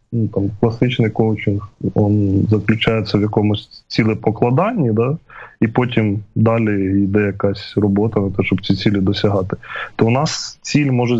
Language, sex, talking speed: Ukrainian, male, 145 wpm